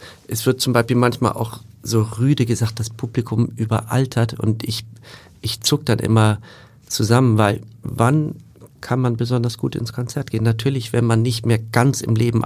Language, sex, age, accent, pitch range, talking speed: German, male, 40-59, German, 110-125 Hz, 175 wpm